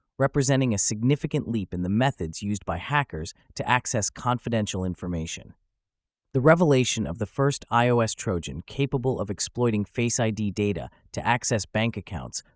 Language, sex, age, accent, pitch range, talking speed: English, male, 30-49, American, 100-130 Hz, 150 wpm